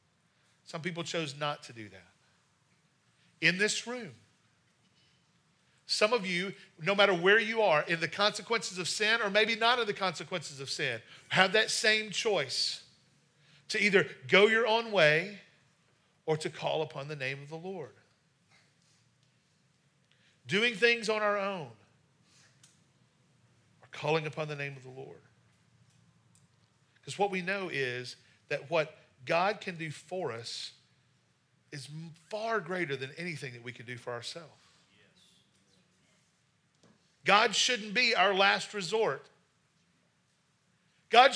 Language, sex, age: English, male, 40-59